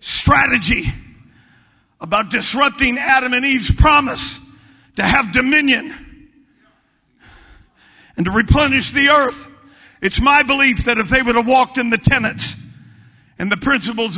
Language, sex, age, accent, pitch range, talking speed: English, male, 50-69, American, 240-295 Hz, 125 wpm